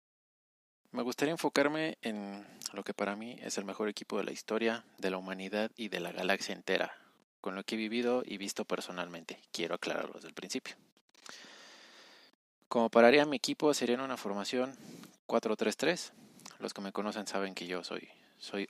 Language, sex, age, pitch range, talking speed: Spanish, male, 20-39, 95-125 Hz, 175 wpm